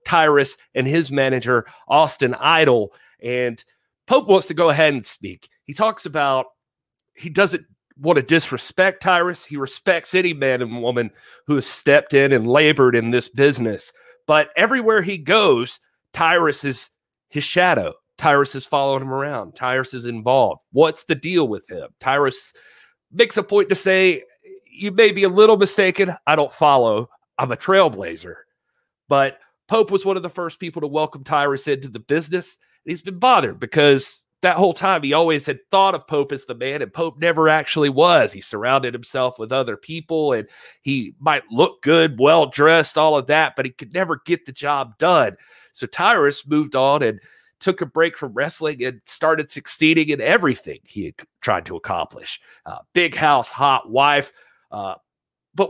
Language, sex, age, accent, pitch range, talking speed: English, male, 30-49, American, 135-180 Hz, 175 wpm